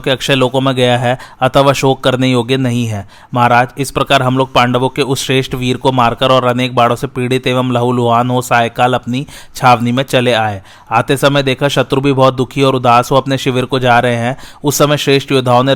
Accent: native